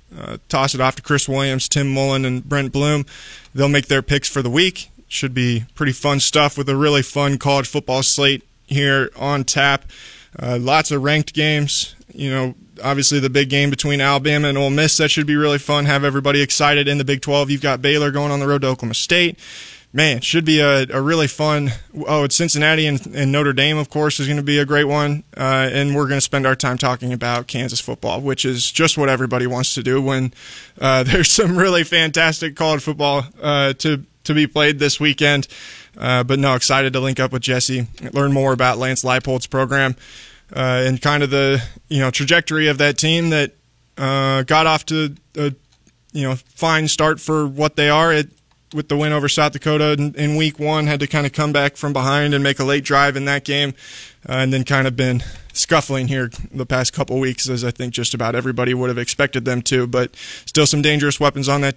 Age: 20-39